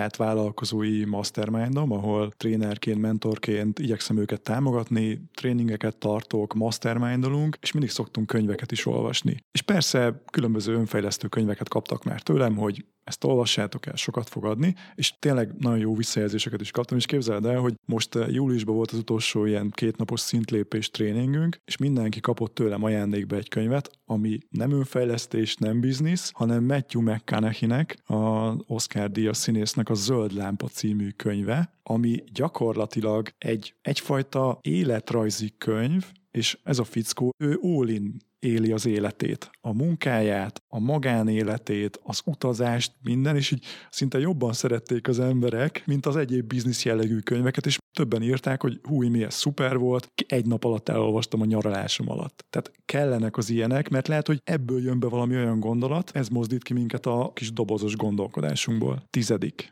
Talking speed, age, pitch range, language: 150 wpm, 30-49, 110-130 Hz, Hungarian